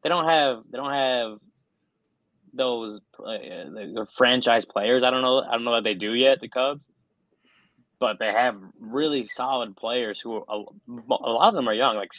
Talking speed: 185 wpm